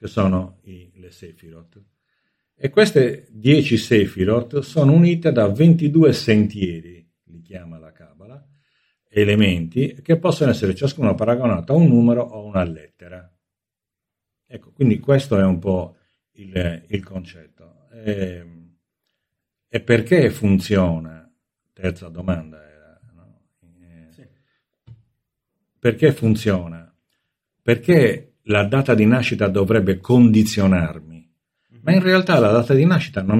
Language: Italian